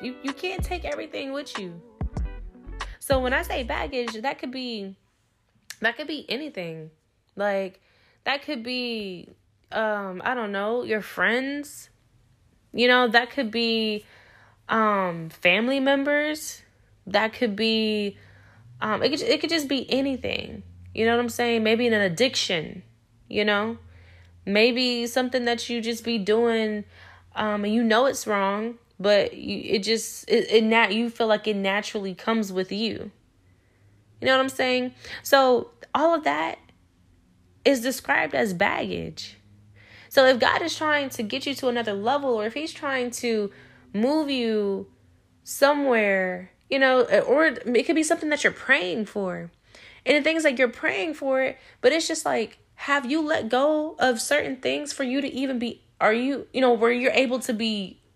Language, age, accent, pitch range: English, 10-29, American, 185-265 Hz